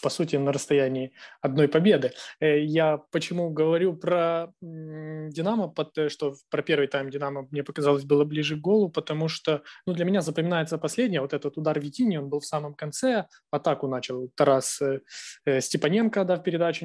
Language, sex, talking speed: Ukrainian, male, 155 wpm